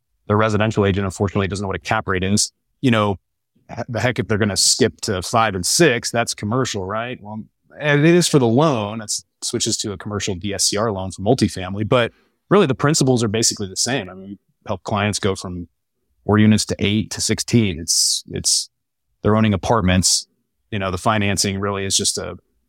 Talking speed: 205 wpm